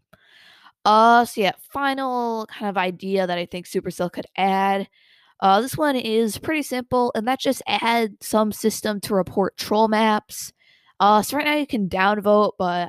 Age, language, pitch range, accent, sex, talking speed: 20-39, English, 180-215 Hz, American, female, 170 wpm